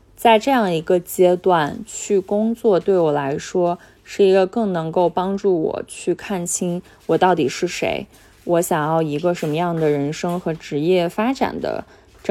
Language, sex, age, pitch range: Chinese, female, 20-39, 165-210 Hz